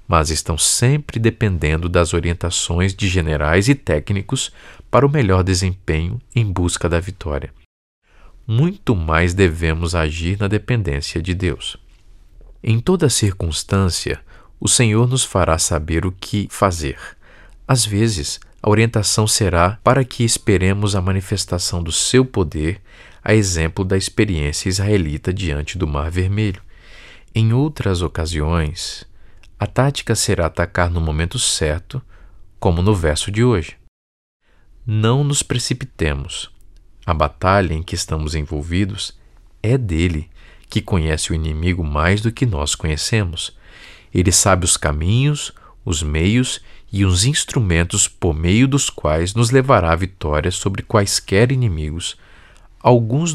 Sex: male